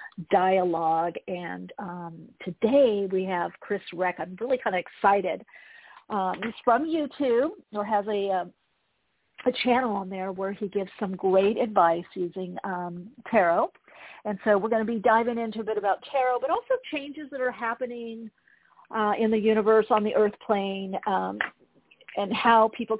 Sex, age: female, 50-69